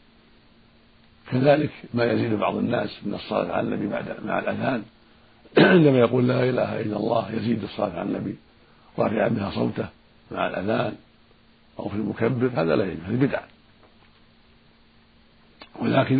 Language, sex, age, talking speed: Arabic, male, 60-79, 130 wpm